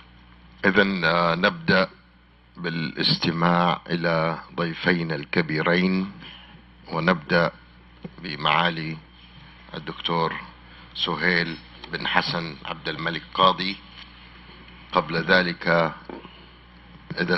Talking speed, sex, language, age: 60 wpm, male, English, 50-69